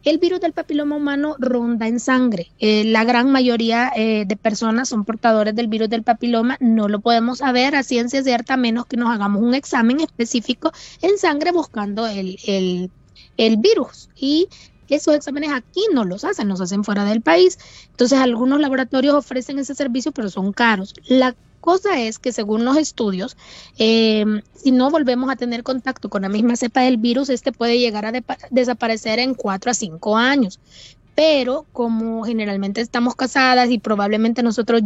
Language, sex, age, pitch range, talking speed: Spanish, female, 20-39, 220-270 Hz, 175 wpm